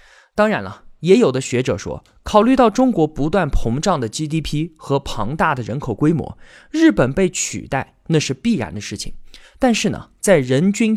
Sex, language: male, Chinese